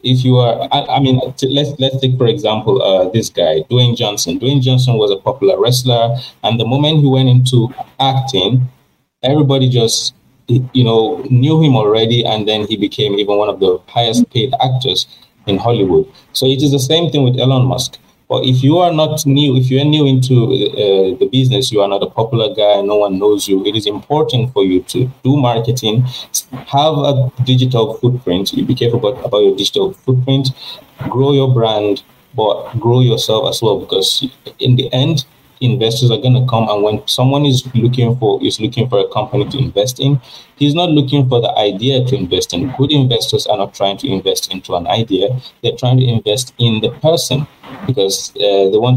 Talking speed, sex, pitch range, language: 200 wpm, male, 110-135 Hz, English